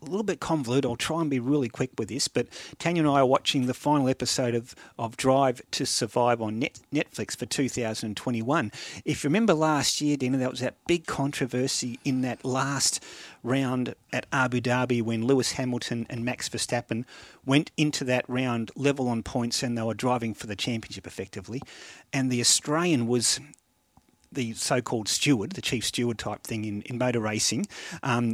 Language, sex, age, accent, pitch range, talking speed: English, male, 40-59, Australian, 120-150 Hz, 180 wpm